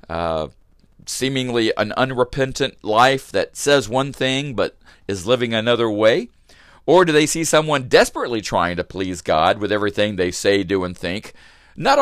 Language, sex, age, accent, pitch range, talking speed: English, male, 40-59, American, 90-125 Hz, 160 wpm